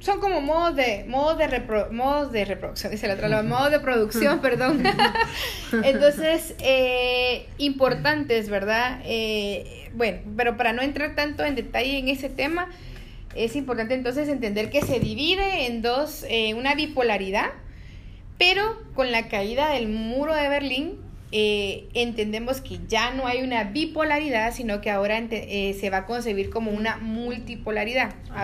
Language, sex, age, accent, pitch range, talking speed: English, female, 30-49, Mexican, 210-270 Hz, 155 wpm